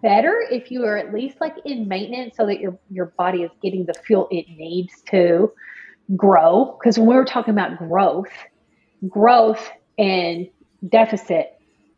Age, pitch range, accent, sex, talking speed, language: 30-49, 180-230 Hz, American, female, 155 wpm, English